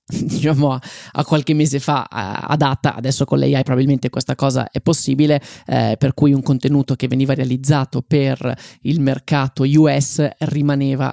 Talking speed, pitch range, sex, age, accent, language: 145 wpm, 130-145 Hz, male, 20-39, native, Italian